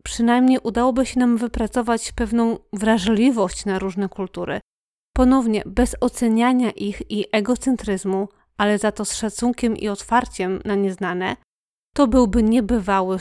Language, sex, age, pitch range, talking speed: Polish, female, 30-49, 205-240 Hz, 125 wpm